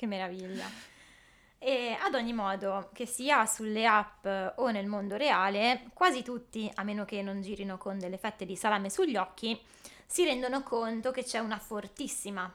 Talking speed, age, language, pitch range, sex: 165 wpm, 20-39, Italian, 190-235 Hz, female